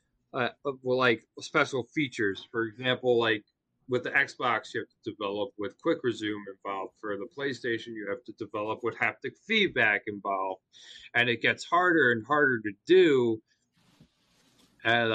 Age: 30-49